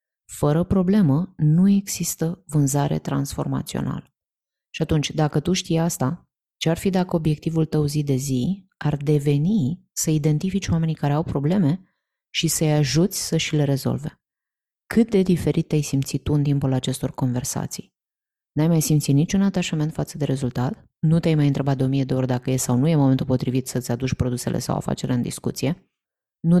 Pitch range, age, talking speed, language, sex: 130-160 Hz, 20-39, 175 wpm, Romanian, female